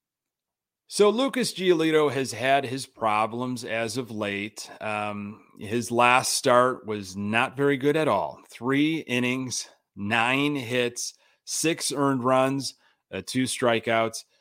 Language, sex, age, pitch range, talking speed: English, male, 30-49, 110-130 Hz, 125 wpm